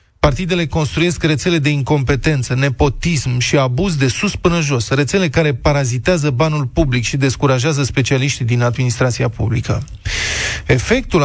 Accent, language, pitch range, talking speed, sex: native, Romanian, 130-165 Hz, 130 wpm, male